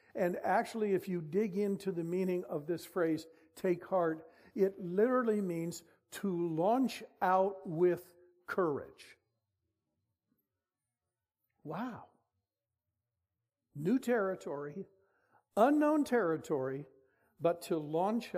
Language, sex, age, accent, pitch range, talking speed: English, male, 60-79, American, 155-205 Hz, 95 wpm